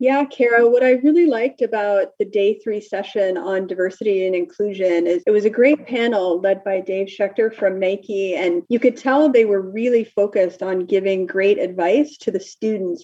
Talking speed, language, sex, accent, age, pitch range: 195 wpm, English, female, American, 30-49, 195-230 Hz